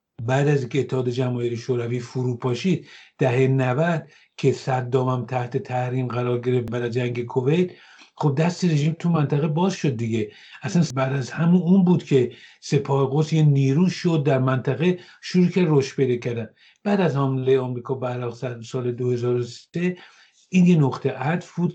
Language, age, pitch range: English, 50-69, 130-165 Hz